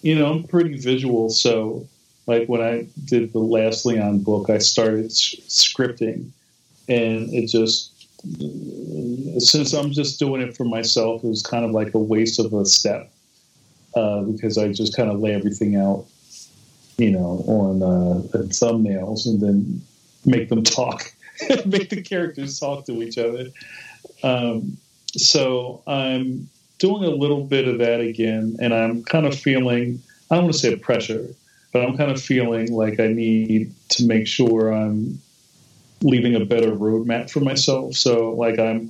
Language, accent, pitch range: English, American, 110-125 Hz